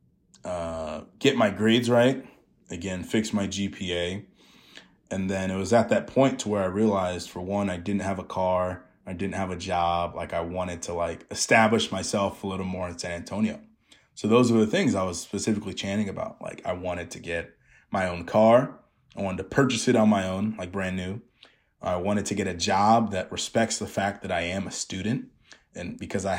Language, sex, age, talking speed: English, male, 20-39, 210 wpm